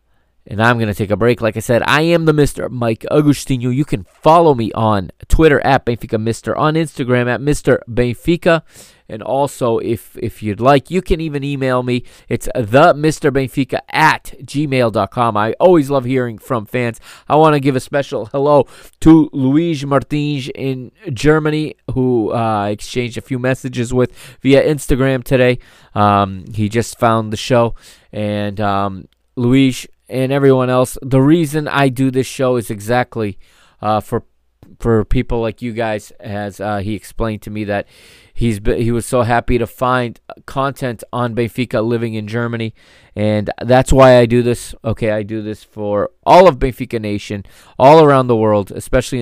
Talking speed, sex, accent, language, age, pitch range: 170 wpm, male, American, English, 20-39, 110-135 Hz